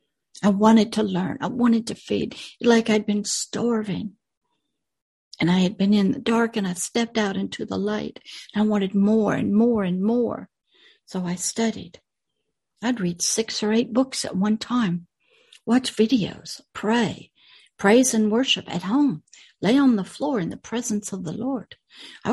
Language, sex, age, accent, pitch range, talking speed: English, female, 60-79, American, 195-245 Hz, 175 wpm